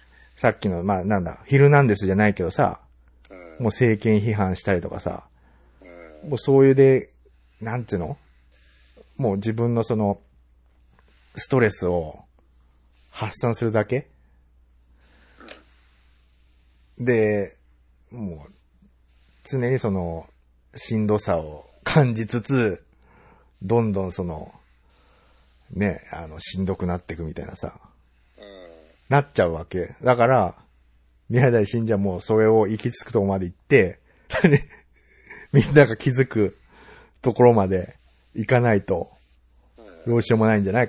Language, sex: Japanese, male